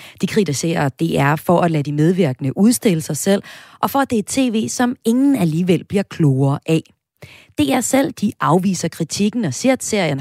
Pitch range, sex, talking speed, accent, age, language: 145-220 Hz, female, 190 wpm, native, 30-49, Danish